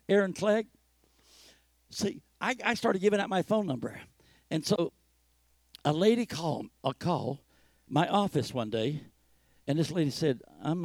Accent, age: American, 60-79